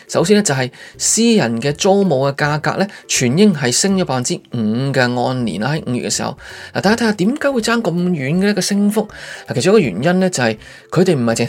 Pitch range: 130-190 Hz